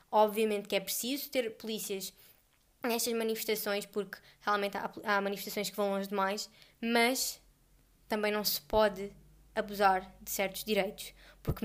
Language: Portuguese